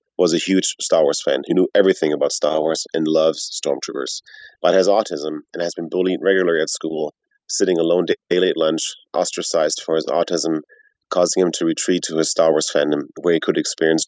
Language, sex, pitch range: English, male, 80-115 Hz